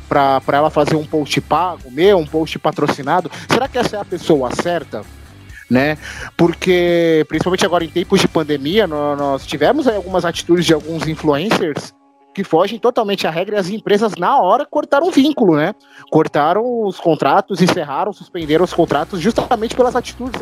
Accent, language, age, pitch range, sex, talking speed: Brazilian, Portuguese, 20-39, 160-215 Hz, male, 175 wpm